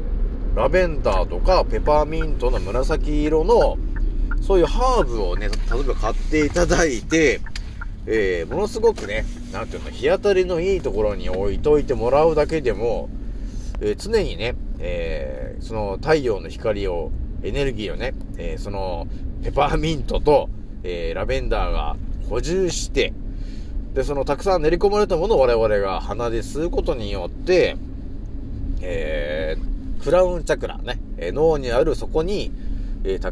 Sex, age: male, 40-59